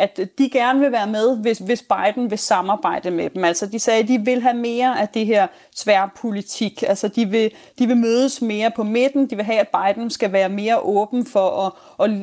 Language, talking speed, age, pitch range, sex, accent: Danish, 220 wpm, 30-49, 210-255 Hz, female, native